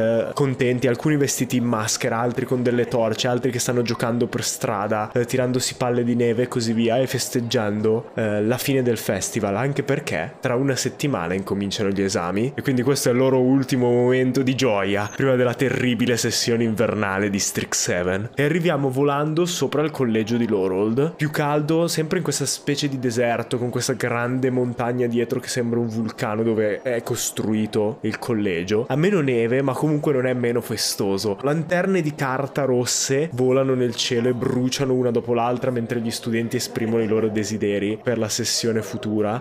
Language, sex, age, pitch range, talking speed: Italian, male, 20-39, 115-135 Hz, 180 wpm